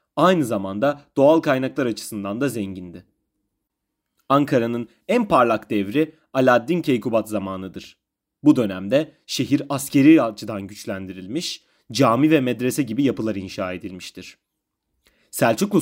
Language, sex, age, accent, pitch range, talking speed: Turkish, male, 30-49, native, 105-140 Hz, 105 wpm